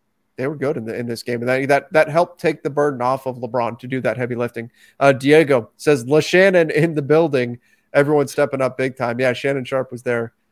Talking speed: 235 wpm